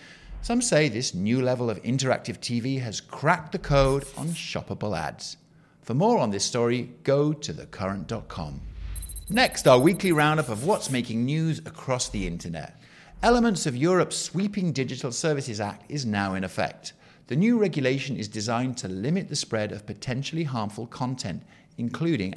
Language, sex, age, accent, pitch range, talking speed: English, male, 50-69, British, 115-165 Hz, 160 wpm